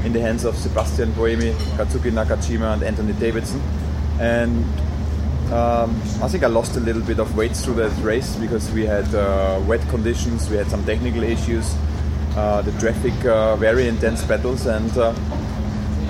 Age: 30-49